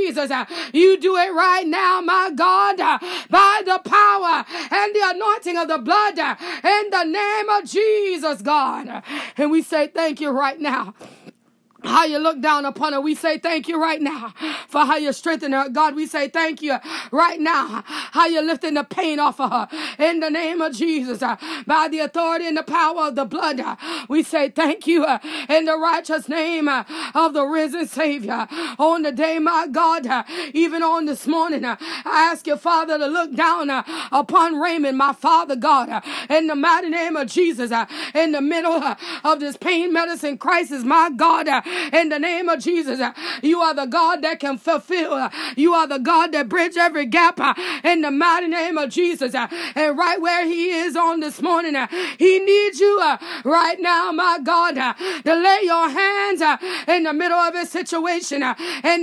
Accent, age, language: American, 30-49, English